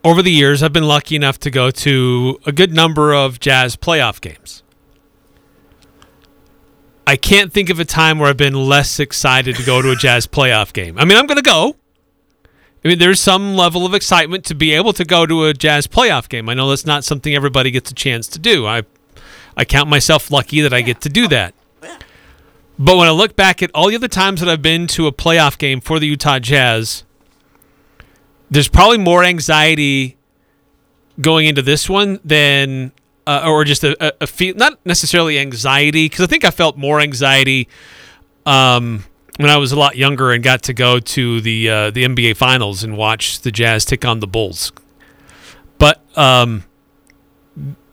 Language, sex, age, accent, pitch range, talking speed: English, male, 40-59, American, 130-170 Hz, 195 wpm